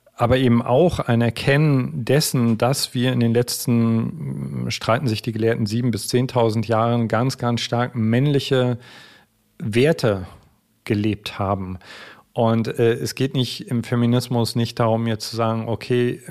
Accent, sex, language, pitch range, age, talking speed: German, male, German, 110-125 Hz, 40-59, 145 wpm